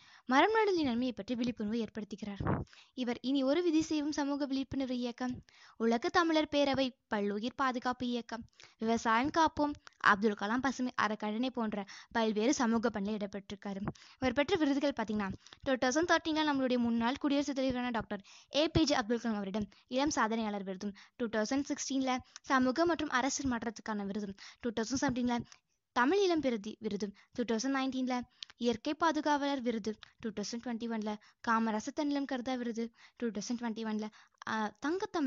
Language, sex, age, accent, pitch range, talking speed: Tamil, female, 20-39, native, 220-280 Hz, 95 wpm